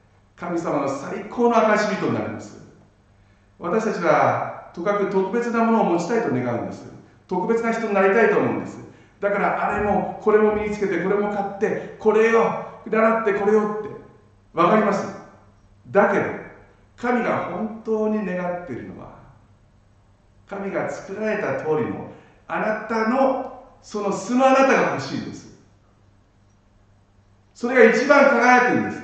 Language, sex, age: Japanese, male, 60-79